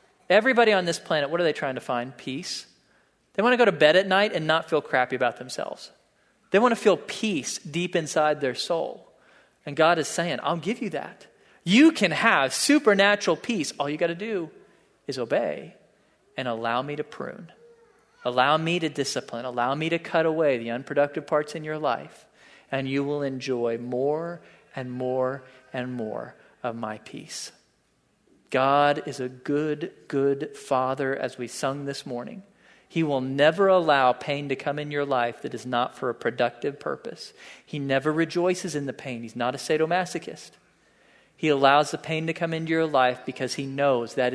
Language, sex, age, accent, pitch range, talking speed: English, male, 40-59, American, 130-170 Hz, 185 wpm